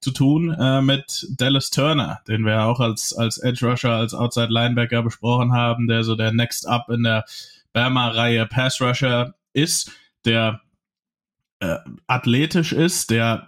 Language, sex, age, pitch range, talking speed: German, male, 20-39, 115-140 Hz, 135 wpm